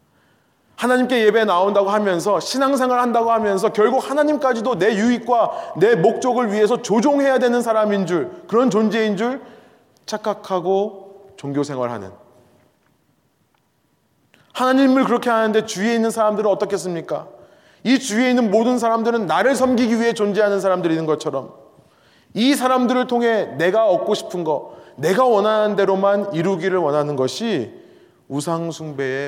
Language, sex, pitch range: Korean, male, 170-230 Hz